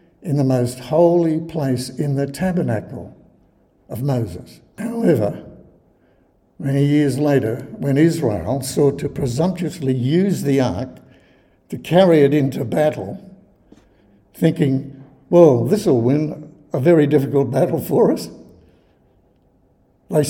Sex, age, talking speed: male, 60-79, 115 wpm